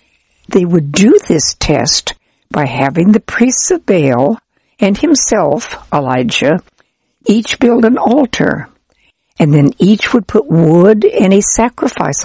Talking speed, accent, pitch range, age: 130 wpm, American, 160-230 Hz, 60-79